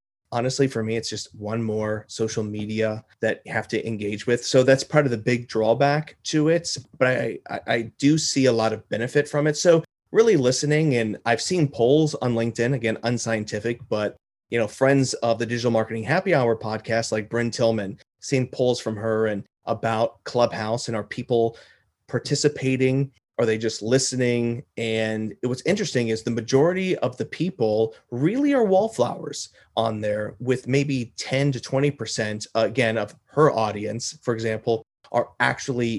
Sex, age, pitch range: male, 30-49, 110-135 Hz